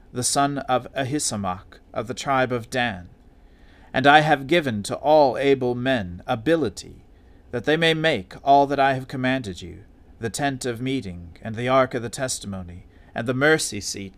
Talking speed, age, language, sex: 180 wpm, 40-59, English, male